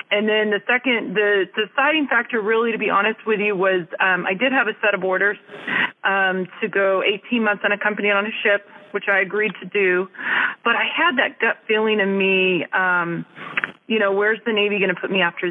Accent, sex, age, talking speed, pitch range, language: American, female, 30-49, 225 wpm, 190-220 Hz, English